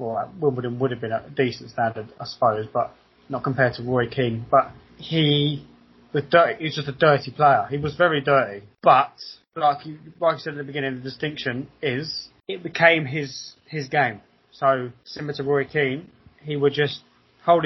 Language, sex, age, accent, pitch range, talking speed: English, male, 20-39, British, 125-155 Hz, 190 wpm